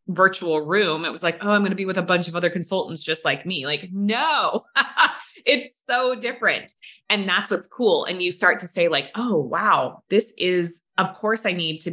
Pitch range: 150-185 Hz